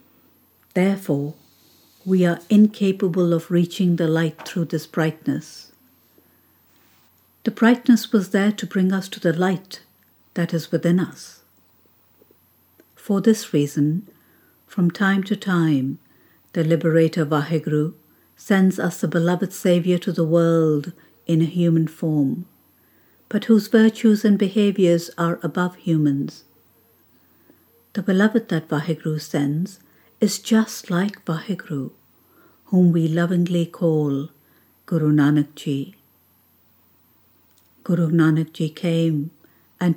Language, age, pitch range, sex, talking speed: English, 60-79, 155-190 Hz, female, 115 wpm